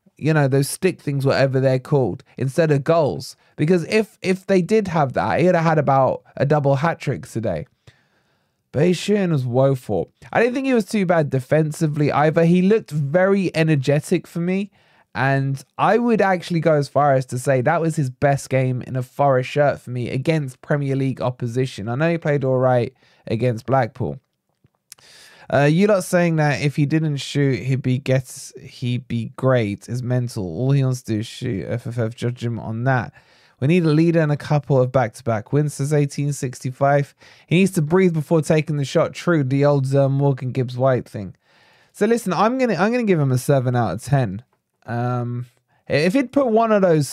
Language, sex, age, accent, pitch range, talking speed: English, male, 20-39, British, 125-165 Hz, 205 wpm